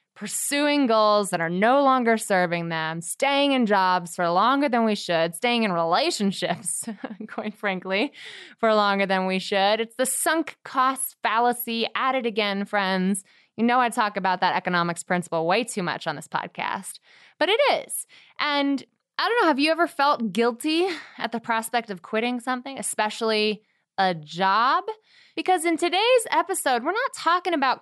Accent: American